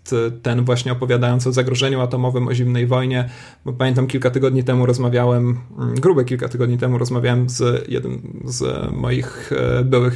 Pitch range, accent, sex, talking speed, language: 125-135 Hz, native, male, 150 wpm, Polish